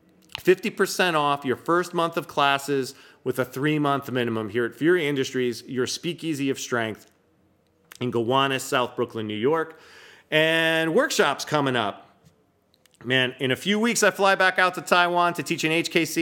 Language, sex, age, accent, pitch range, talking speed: English, male, 40-59, American, 130-175 Hz, 160 wpm